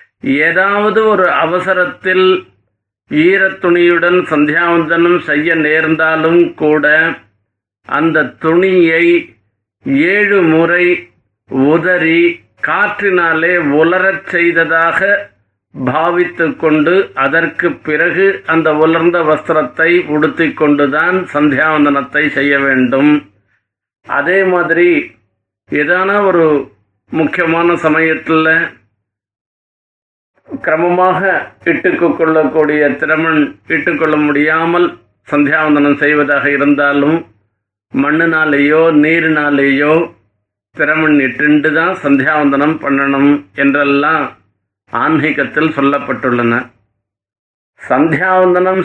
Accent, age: native, 50-69